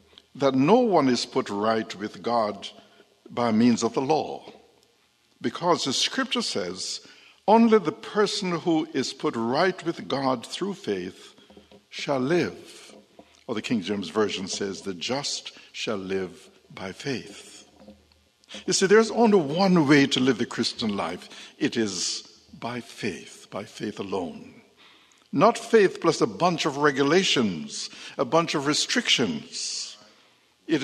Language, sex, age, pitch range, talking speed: English, male, 60-79, 115-190 Hz, 140 wpm